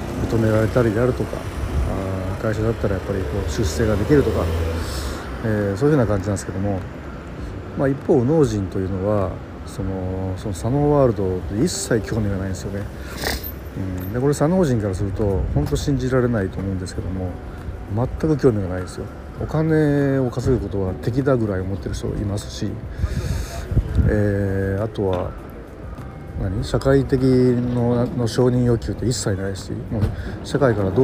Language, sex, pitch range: Japanese, male, 95-120 Hz